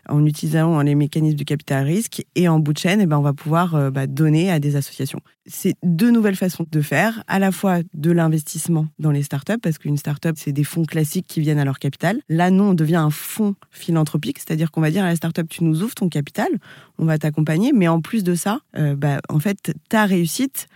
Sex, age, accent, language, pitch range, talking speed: female, 20-39, French, French, 150-180 Hz, 235 wpm